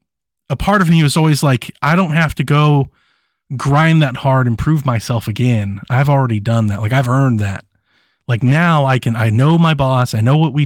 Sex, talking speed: male, 220 wpm